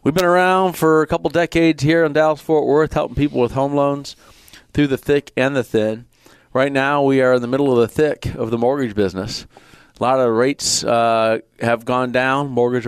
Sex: male